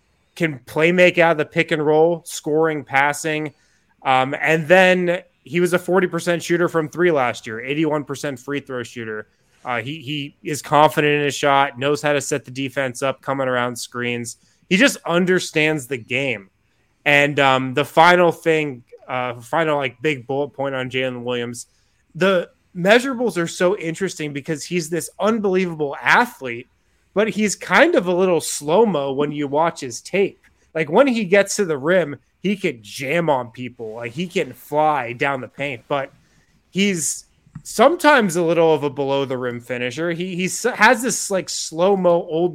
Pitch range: 135-175 Hz